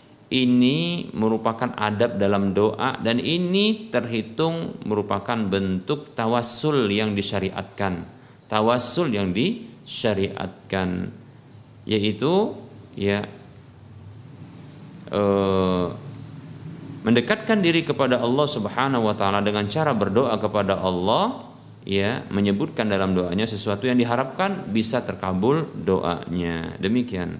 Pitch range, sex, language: 100-155 Hz, male, Indonesian